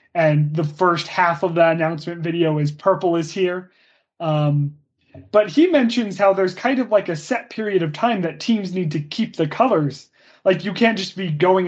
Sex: male